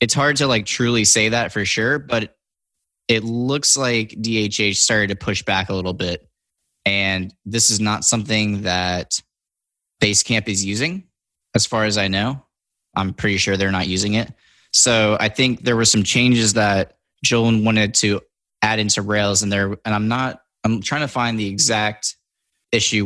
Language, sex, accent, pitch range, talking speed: English, male, American, 100-120 Hz, 175 wpm